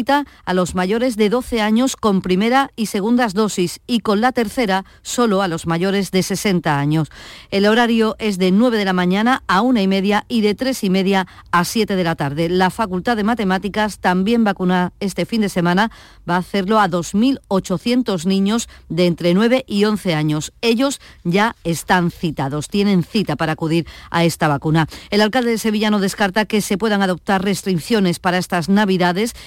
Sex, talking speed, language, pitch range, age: female, 185 wpm, Spanish, 185-230 Hz, 40-59